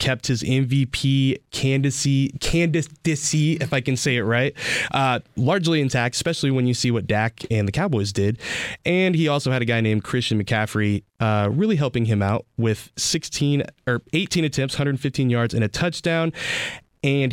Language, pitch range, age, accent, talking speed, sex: English, 110-140 Hz, 20-39, American, 165 wpm, male